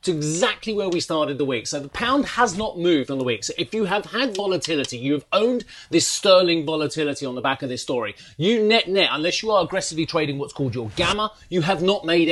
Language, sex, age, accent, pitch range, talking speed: English, male, 30-49, British, 135-175 Hz, 240 wpm